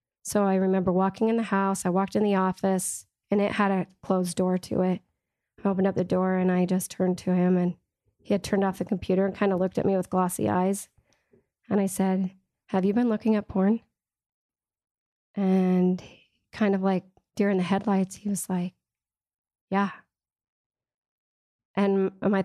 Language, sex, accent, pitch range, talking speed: English, female, American, 185-200 Hz, 185 wpm